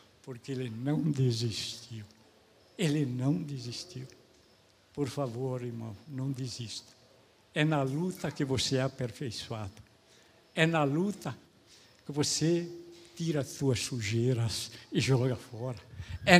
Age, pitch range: 60-79, 125-160 Hz